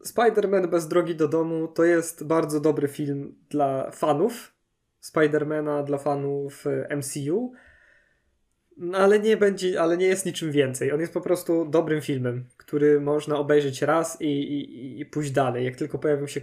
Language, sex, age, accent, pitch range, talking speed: Polish, male, 20-39, native, 140-155 Hz, 155 wpm